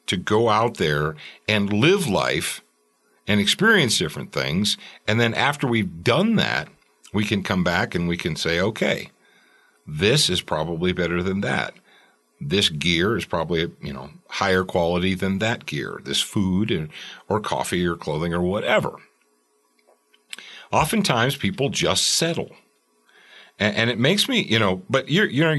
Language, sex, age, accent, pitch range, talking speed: English, male, 50-69, American, 90-115 Hz, 150 wpm